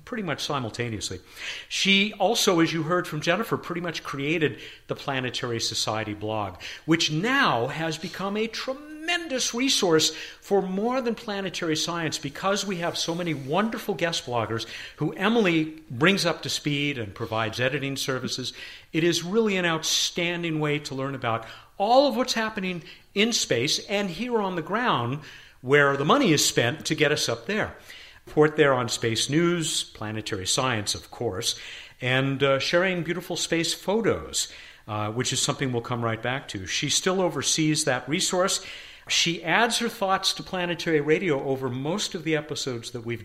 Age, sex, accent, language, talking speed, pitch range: 50-69, male, American, English, 165 wpm, 130-190 Hz